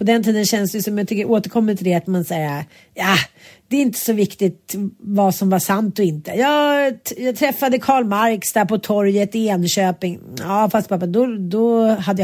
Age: 40-59